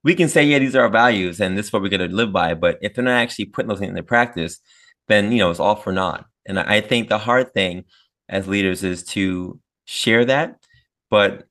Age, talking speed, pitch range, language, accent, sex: 20-39, 245 wpm, 90-110 Hz, English, American, male